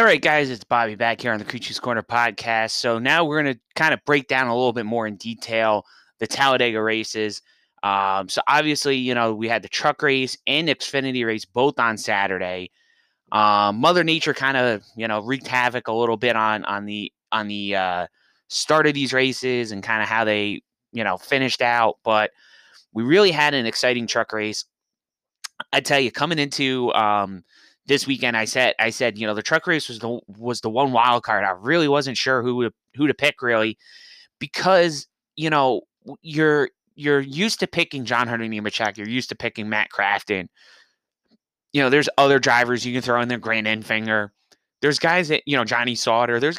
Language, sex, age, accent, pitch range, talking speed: English, male, 20-39, American, 110-140 Hz, 200 wpm